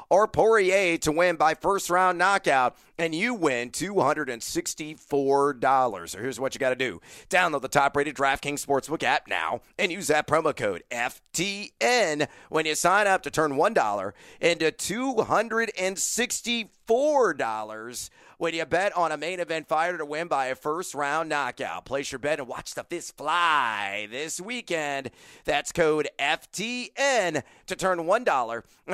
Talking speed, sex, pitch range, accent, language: 145 wpm, male, 140-205 Hz, American, English